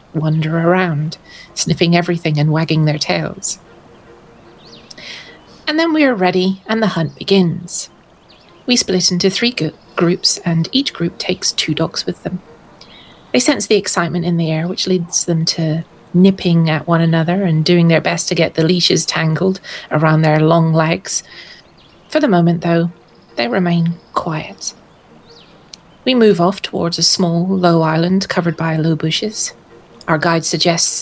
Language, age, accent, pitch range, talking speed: English, 30-49, British, 165-195 Hz, 155 wpm